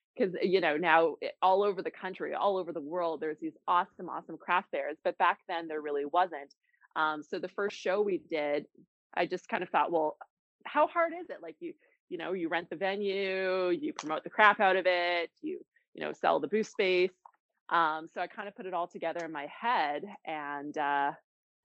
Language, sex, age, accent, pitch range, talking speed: English, female, 20-39, American, 170-215 Hz, 215 wpm